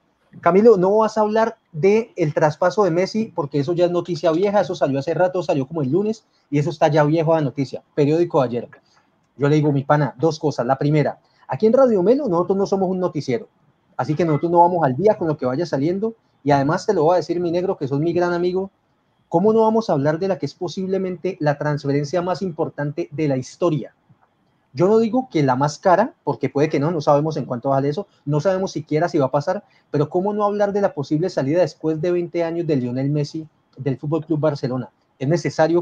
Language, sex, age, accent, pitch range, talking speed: Spanish, male, 30-49, Colombian, 145-185 Hz, 235 wpm